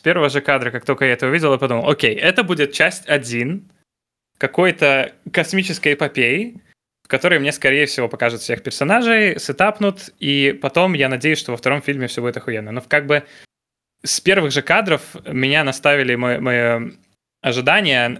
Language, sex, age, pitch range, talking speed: Russian, male, 20-39, 120-150 Hz, 170 wpm